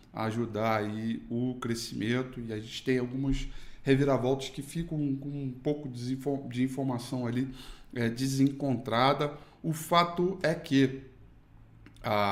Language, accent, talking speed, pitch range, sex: Portuguese, Brazilian, 115 wpm, 115-135 Hz, male